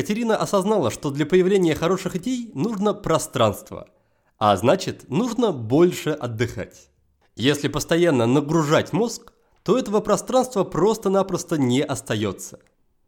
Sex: male